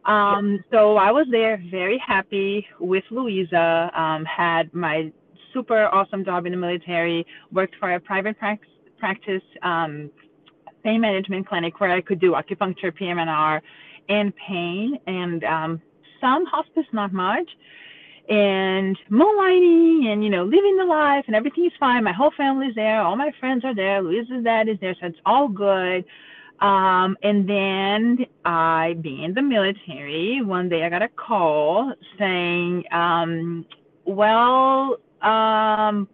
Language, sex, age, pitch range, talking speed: English, female, 30-49, 175-235 Hz, 150 wpm